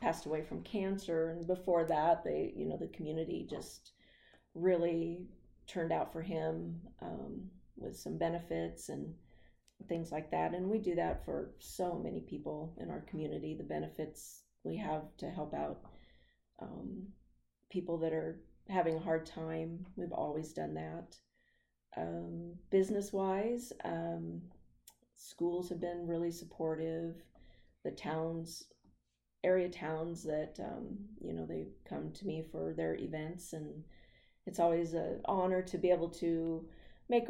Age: 40-59